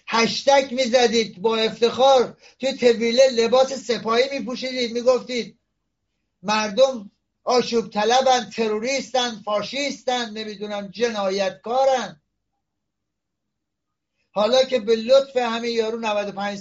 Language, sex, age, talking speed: Persian, male, 60-79, 85 wpm